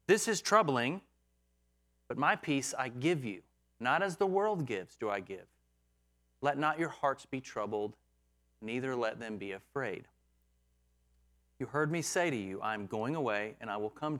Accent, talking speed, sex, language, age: American, 180 wpm, male, English, 30-49